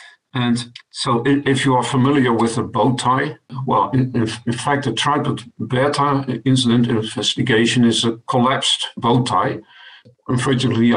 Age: 50-69